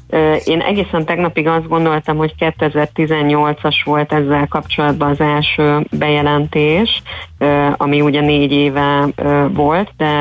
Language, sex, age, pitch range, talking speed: Hungarian, female, 30-49, 145-155 Hz, 110 wpm